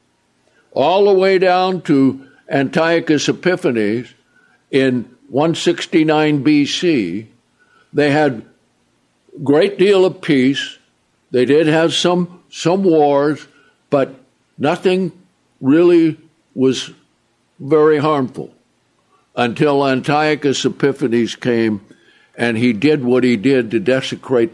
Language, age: English, 60-79